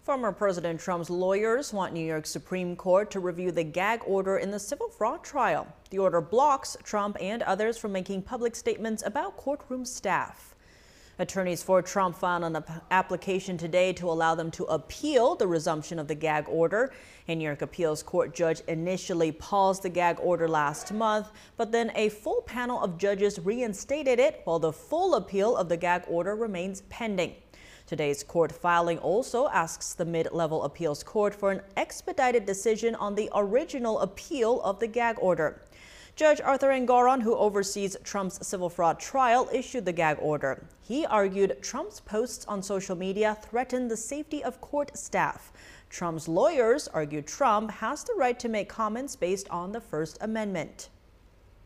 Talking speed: 165 wpm